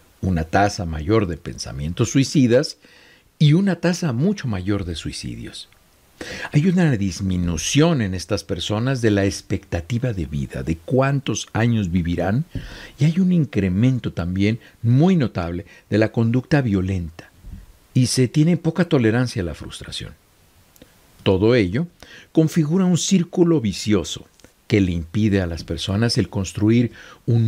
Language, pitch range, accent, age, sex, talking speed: Spanish, 95-135 Hz, Mexican, 60-79, male, 135 wpm